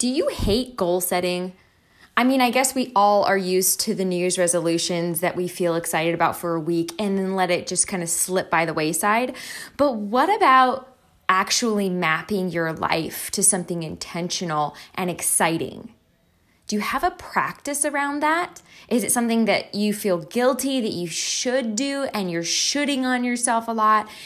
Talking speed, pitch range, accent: 185 wpm, 180-250 Hz, American